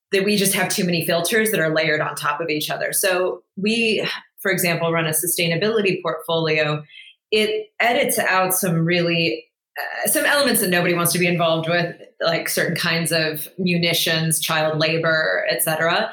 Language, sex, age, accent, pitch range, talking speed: English, female, 20-39, American, 165-205 Hz, 175 wpm